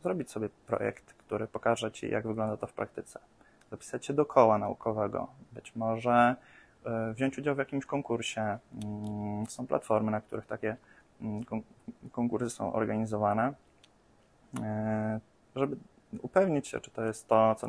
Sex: male